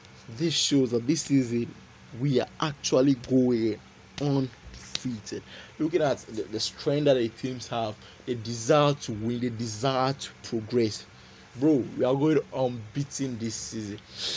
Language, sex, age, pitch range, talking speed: English, male, 20-39, 110-150 Hz, 145 wpm